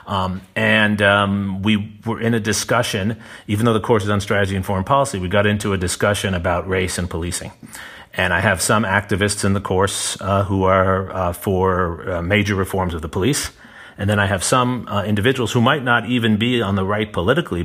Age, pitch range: 40-59, 95-120 Hz